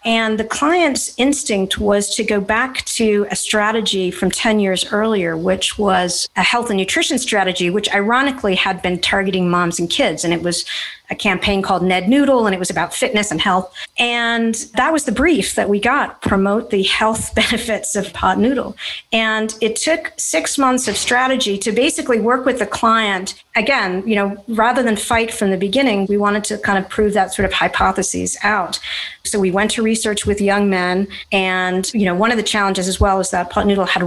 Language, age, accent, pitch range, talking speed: English, 40-59, American, 185-225 Hz, 205 wpm